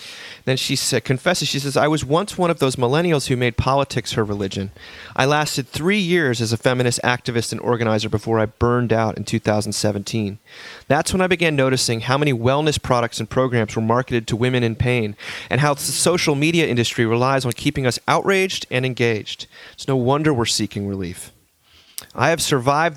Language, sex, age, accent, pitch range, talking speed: English, male, 30-49, American, 120-155 Hz, 190 wpm